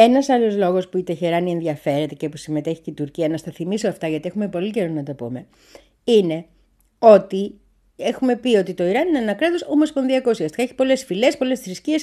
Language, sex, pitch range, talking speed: Greek, female, 170-275 Hz, 200 wpm